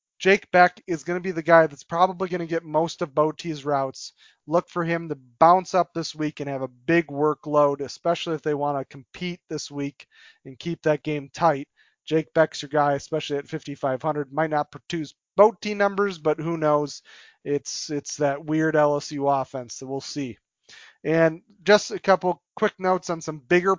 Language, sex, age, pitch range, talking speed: English, male, 30-49, 145-180 Hz, 190 wpm